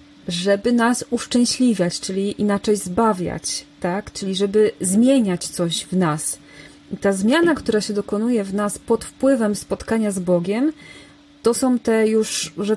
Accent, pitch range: native, 190-230 Hz